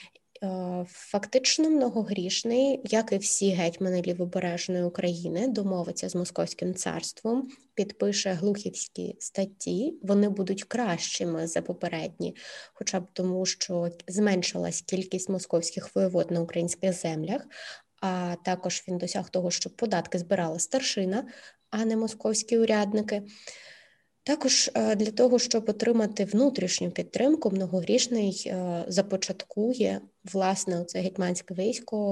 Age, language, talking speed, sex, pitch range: 20-39, Ukrainian, 110 wpm, female, 185-230 Hz